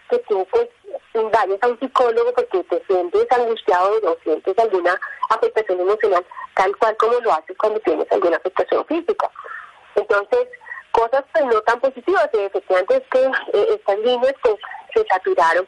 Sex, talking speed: female, 165 wpm